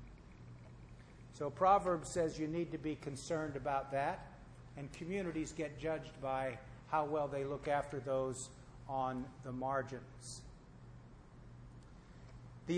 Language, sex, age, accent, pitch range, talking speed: English, male, 50-69, American, 145-185 Hz, 115 wpm